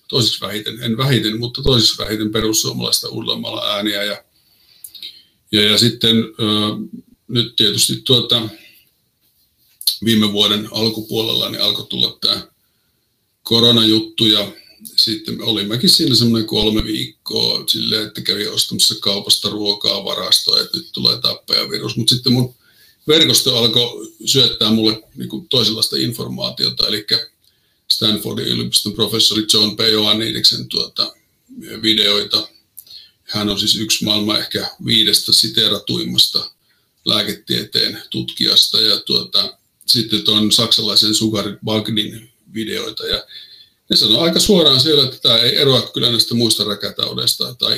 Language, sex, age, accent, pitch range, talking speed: Finnish, male, 50-69, native, 105-115 Hz, 120 wpm